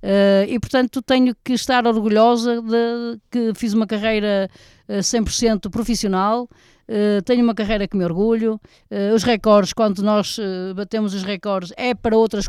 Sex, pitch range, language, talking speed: female, 170-220 Hz, Portuguese, 145 wpm